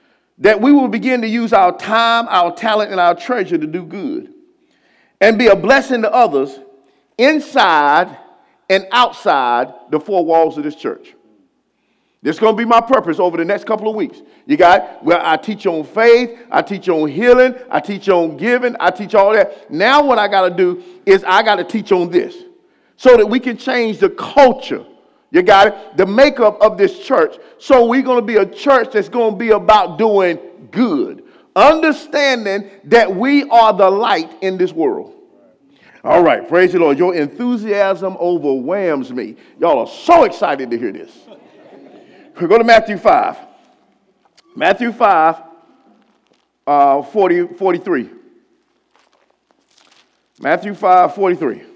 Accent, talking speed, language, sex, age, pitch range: American, 165 wpm, English, male, 50-69, 190-290 Hz